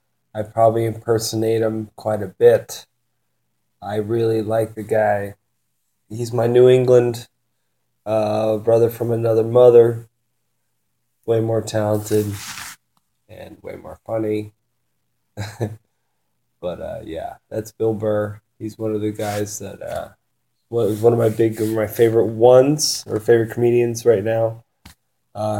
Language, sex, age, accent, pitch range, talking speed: English, male, 20-39, American, 105-115 Hz, 130 wpm